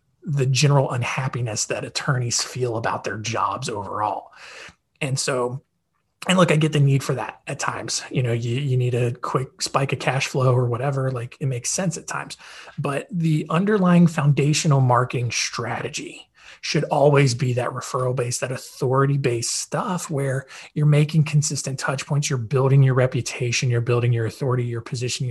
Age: 20-39